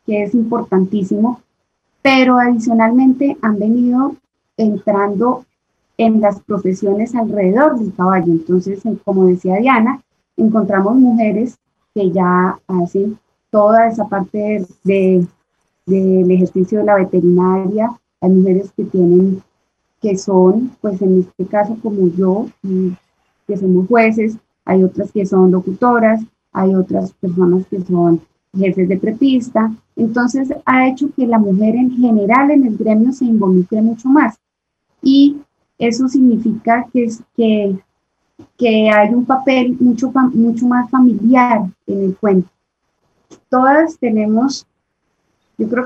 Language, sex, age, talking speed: Spanish, female, 20-39, 130 wpm